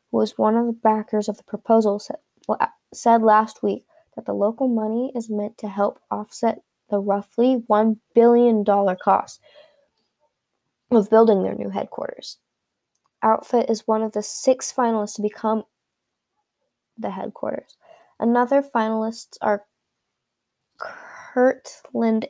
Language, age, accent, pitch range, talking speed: English, 10-29, American, 205-245 Hz, 130 wpm